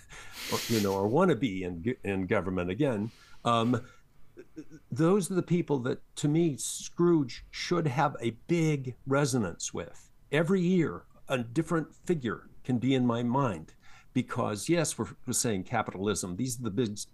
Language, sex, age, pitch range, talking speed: English, male, 60-79, 105-140 Hz, 160 wpm